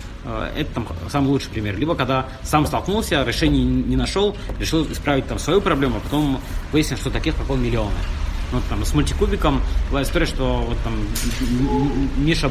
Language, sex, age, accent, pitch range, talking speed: Russian, male, 20-39, native, 110-140 Hz, 165 wpm